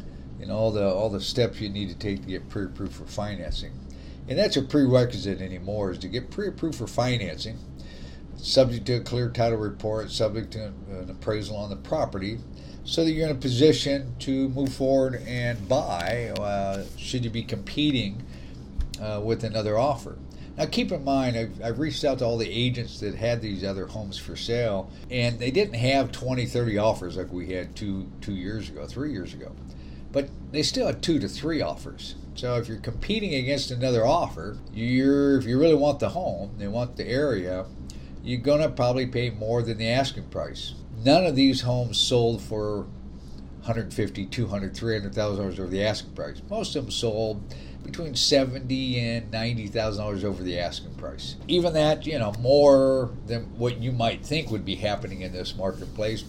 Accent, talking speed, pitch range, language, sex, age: American, 185 wpm, 95-125 Hz, English, male, 50-69